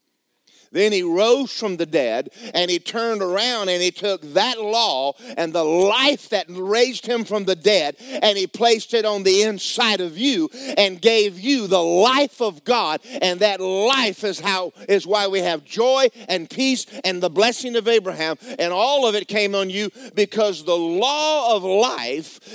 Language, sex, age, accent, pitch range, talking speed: English, male, 50-69, American, 175-235 Hz, 185 wpm